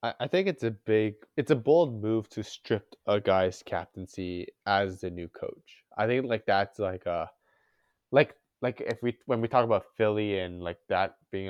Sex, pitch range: male, 95-115 Hz